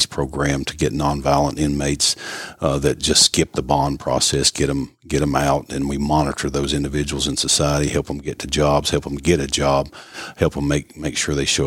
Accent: American